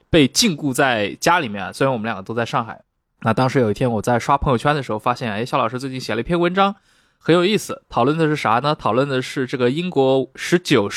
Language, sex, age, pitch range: Chinese, male, 20-39, 115-155 Hz